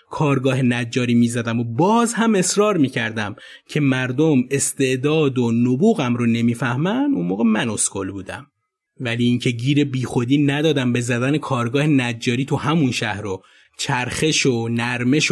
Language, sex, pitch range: Persian, male, 120-160 Hz